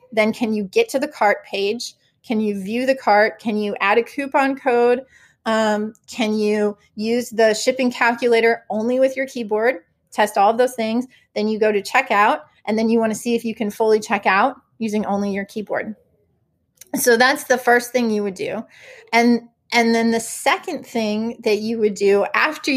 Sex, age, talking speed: female, 30-49, 200 wpm